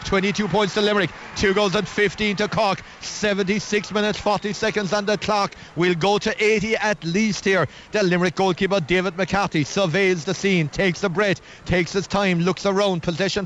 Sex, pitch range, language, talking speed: male, 200-250 Hz, English, 185 wpm